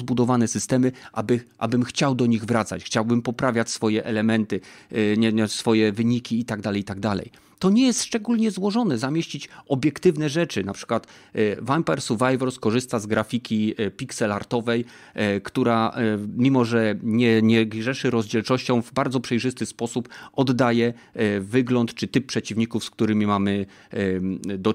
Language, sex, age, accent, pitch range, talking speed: Polish, male, 30-49, native, 115-155 Hz, 125 wpm